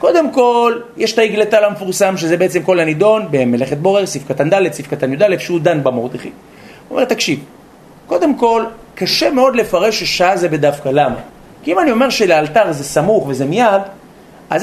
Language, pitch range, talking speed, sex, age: Hebrew, 170-235 Hz, 175 wpm, male, 30-49